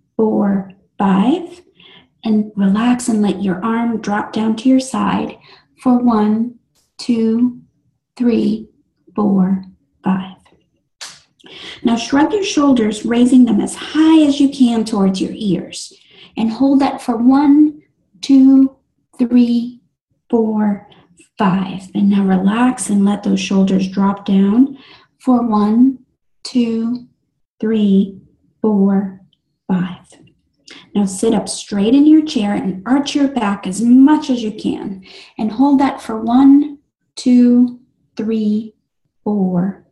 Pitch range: 200-255 Hz